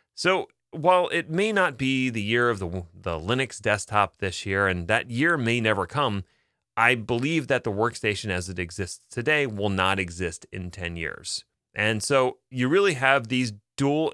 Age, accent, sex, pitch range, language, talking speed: 30-49, American, male, 100-145 Hz, English, 185 wpm